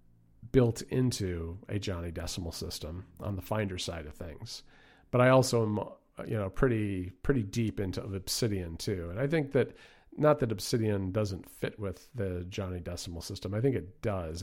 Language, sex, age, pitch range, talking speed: English, male, 50-69, 95-125 Hz, 165 wpm